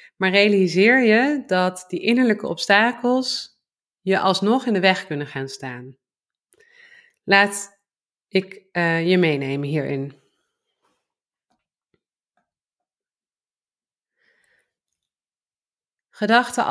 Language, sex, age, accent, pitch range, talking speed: Dutch, female, 30-49, Dutch, 175-225 Hz, 80 wpm